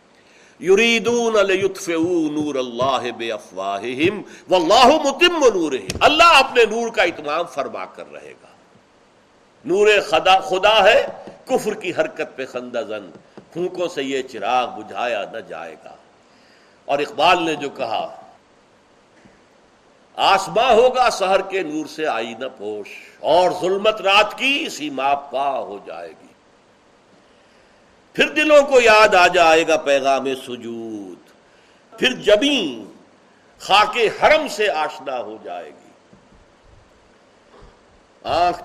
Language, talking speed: Urdu, 115 wpm